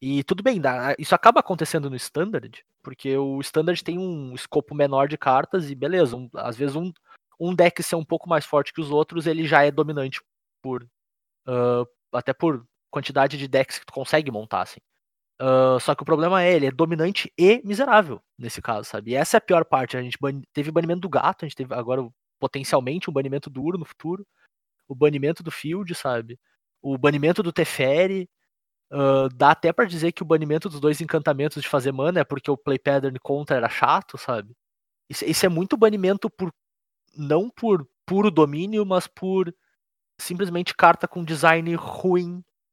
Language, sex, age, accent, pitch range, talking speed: Portuguese, male, 20-39, Brazilian, 135-175 Hz, 190 wpm